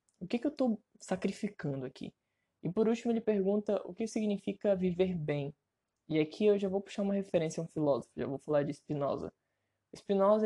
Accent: Brazilian